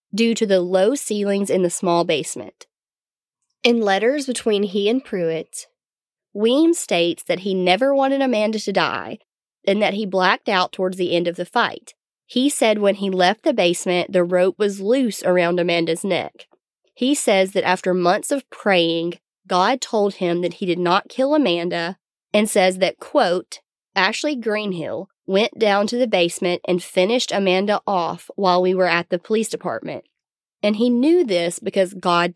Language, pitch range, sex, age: English, 180-230 Hz, female, 20-39